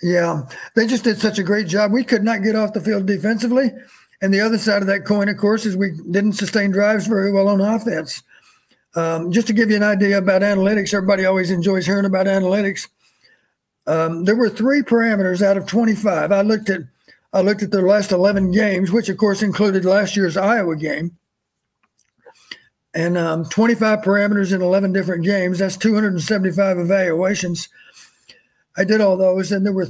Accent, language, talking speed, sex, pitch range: American, English, 185 wpm, male, 185-215 Hz